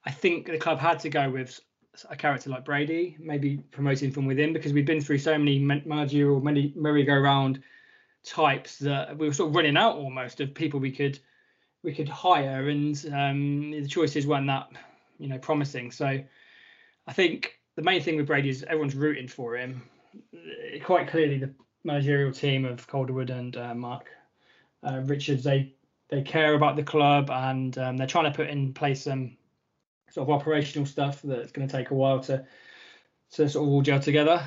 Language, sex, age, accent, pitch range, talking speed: English, male, 20-39, British, 135-150 Hz, 190 wpm